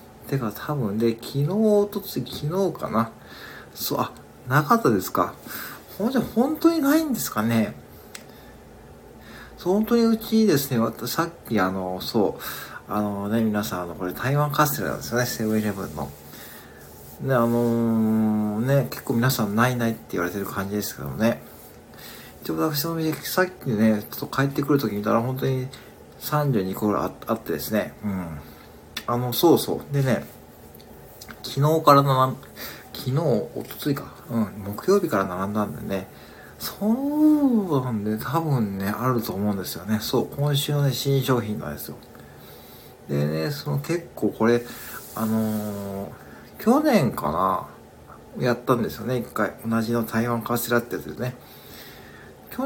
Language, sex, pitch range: Japanese, male, 105-145 Hz